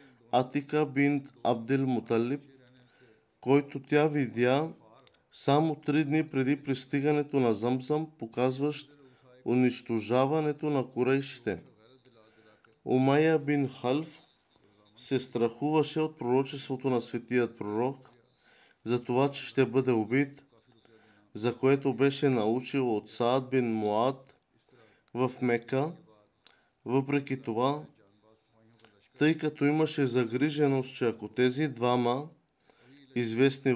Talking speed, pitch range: 100 wpm, 120-140 Hz